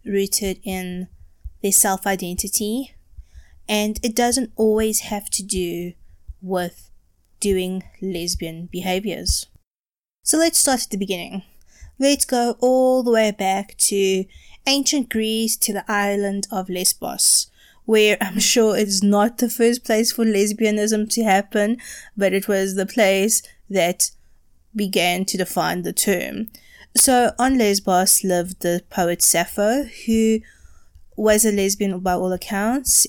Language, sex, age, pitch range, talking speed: English, female, 20-39, 180-220 Hz, 130 wpm